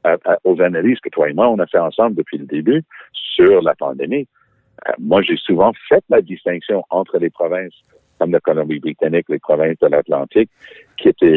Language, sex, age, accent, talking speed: French, male, 60-79, French, 195 wpm